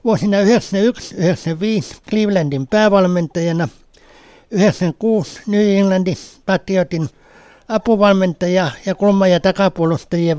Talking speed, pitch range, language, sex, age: 75 wpm, 170-205 Hz, Finnish, male, 60-79